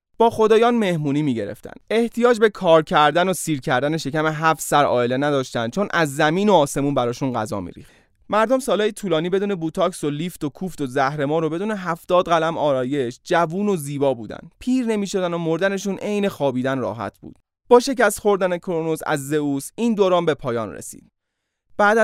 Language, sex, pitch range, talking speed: Persian, male, 135-195 Hz, 180 wpm